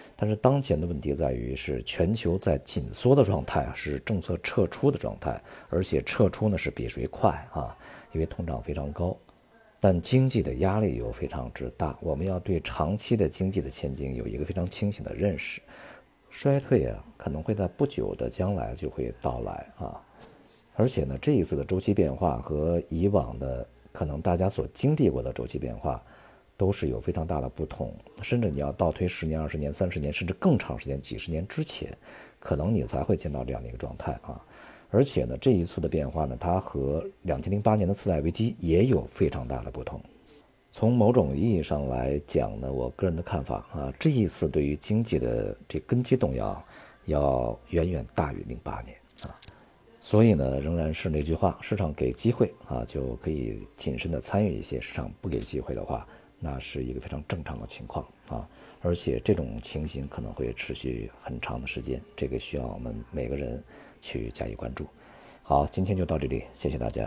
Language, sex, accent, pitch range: Chinese, male, native, 70-105 Hz